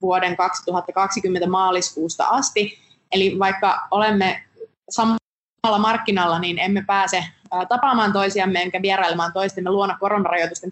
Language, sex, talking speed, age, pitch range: Finnish, female, 105 wpm, 20-39, 185-230 Hz